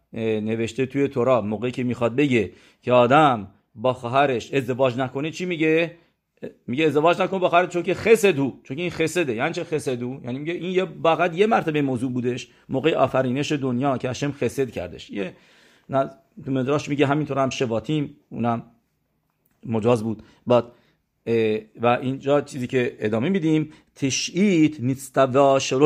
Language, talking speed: English, 155 wpm